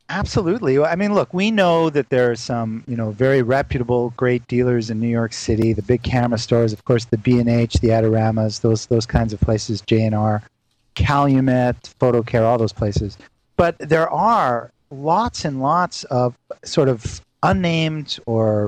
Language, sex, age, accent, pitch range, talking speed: English, male, 40-59, American, 115-150 Hz, 165 wpm